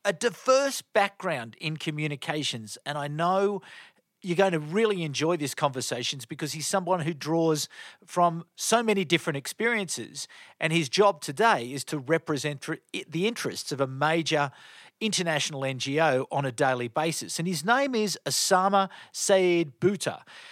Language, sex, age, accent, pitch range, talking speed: English, male, 40-59, Australian, 145-190 Hz, 145 wpm